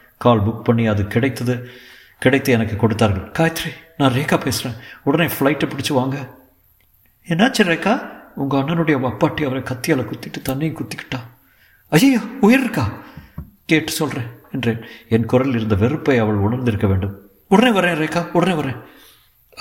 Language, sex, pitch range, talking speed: Tamil, male, 110-145 Hz, 130 wpm